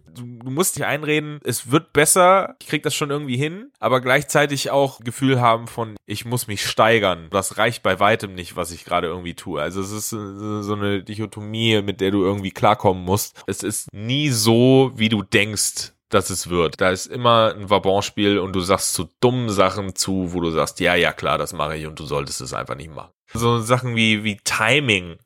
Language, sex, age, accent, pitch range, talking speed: German, male, 10-29, German, 100-125 Hz, 210 wpm